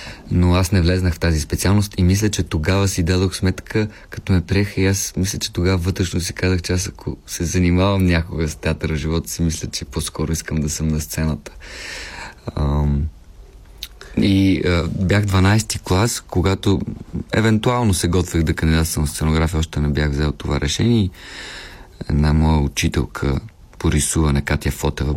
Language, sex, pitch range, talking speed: Bulgarian, male, 80-95 Hz, 165 wpm